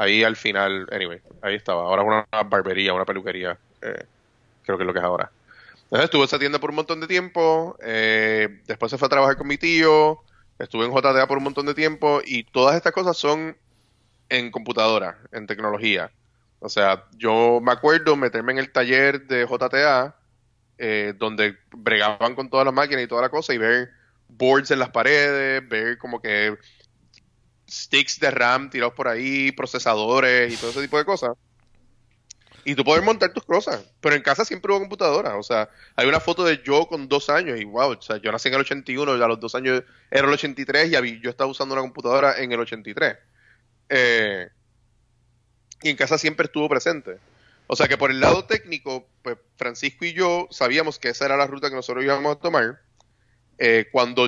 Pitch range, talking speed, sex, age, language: 115-145 Hz, 195 wpm, male, 20-39, Spanish